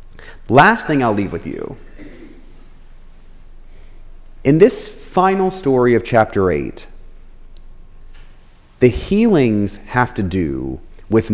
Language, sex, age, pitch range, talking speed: English, male, 30-49, 100-140 Hz, 100 wpm